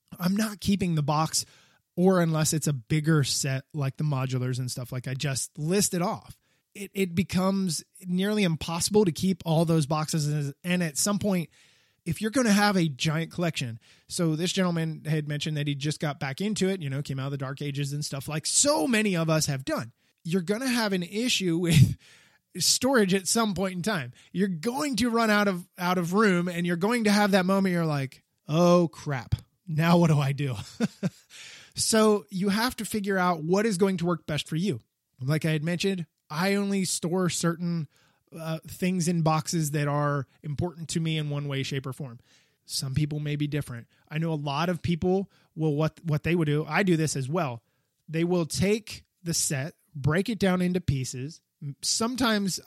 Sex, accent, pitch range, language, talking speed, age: male, American, 145-190 Hz, English, 205 wpm, 20-39